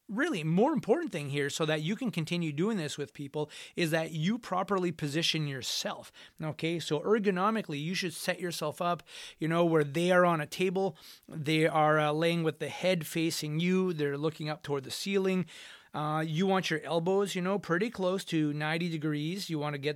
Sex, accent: male, American